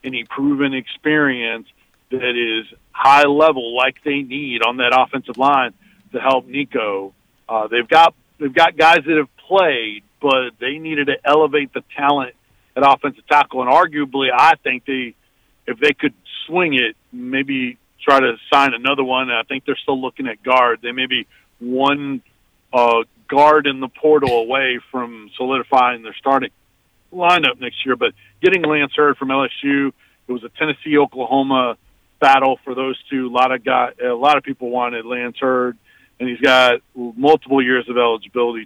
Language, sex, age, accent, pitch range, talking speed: English, male, 50-69, American, 125-140 Hz, 170 wpm